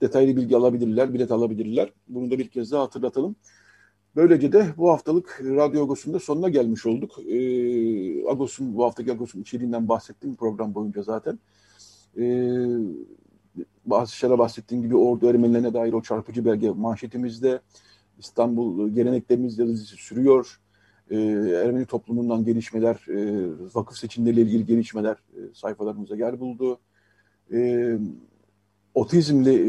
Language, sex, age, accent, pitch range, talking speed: Turkish, male, 50-69, native, 110-125 Hz, 115 wpm